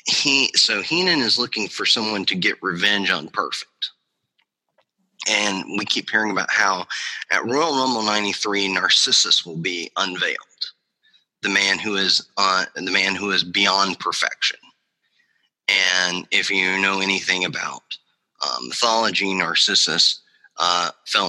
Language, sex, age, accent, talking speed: English, male, 30-49, American, 135 wpm